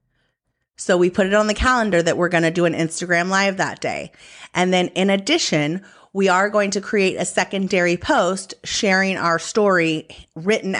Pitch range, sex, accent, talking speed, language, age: 160-195 Hz, female, American, 185 wpm, English, 30-49